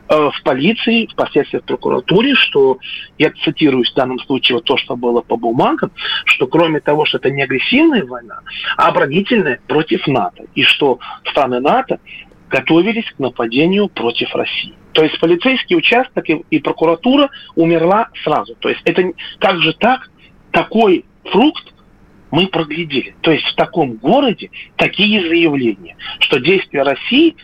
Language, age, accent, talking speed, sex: Russian, 40-59, native, 145 wpm, male